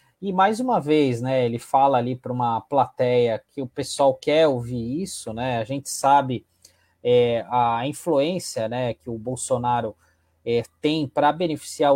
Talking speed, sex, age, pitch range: 150 wpm, male, 20-39, 120-145 Hz